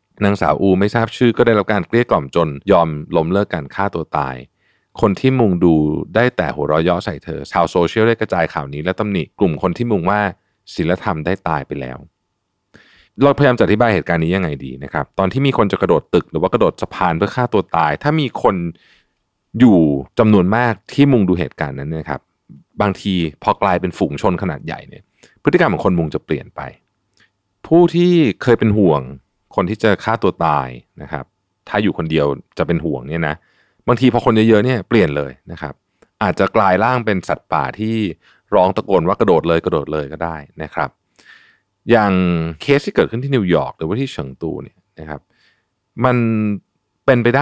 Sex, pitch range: male, 80-115 Hz